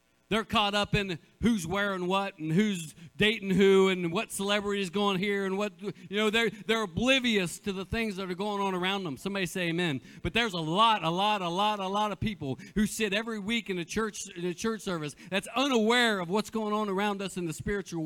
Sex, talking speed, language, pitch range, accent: male, 235 wpm, English, 180-235 Hz, American